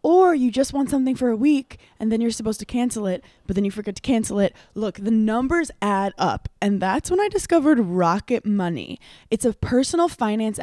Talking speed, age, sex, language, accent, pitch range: 215 wpm, 20-39, female, English, American, 185-235 Hz